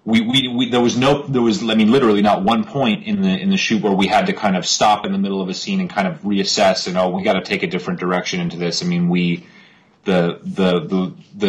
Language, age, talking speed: English, 30-49, 275 wpm